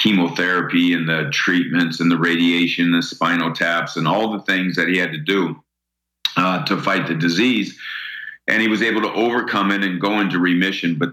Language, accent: English, American